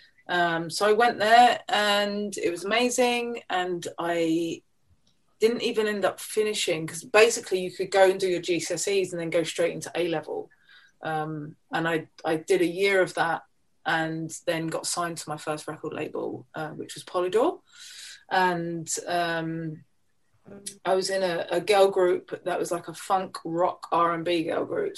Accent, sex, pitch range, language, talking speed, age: British, female, 165-210 Hz, English, 170 wpm, 30-49